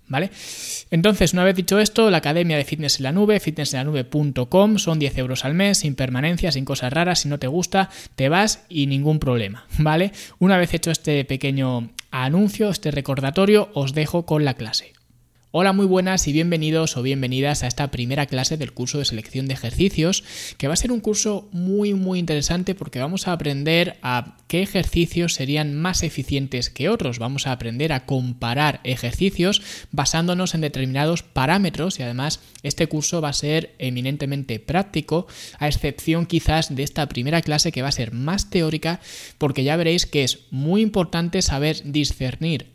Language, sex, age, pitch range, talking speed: Spanish, male, 20-39, 130-175 Hz, 175 wpm